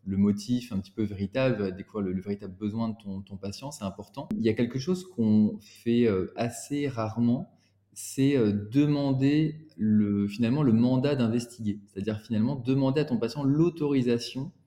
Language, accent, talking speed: French, French, 160 wpm